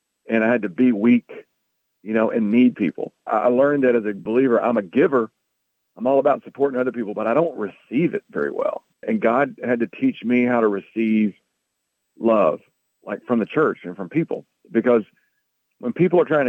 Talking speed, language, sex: 200 wpm, English, male